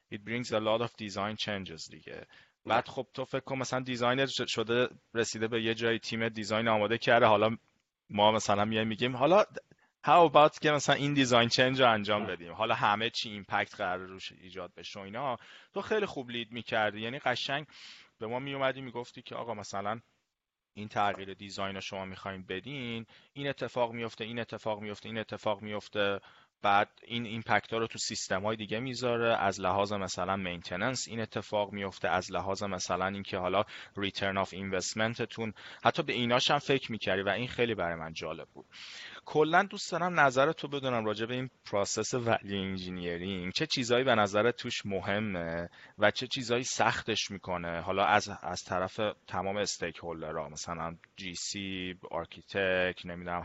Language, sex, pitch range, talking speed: Persian, male, 95-120 Hz, 165 wpm